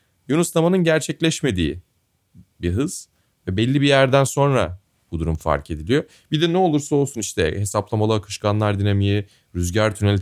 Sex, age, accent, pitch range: male, 30-49, native, 90-120 Hz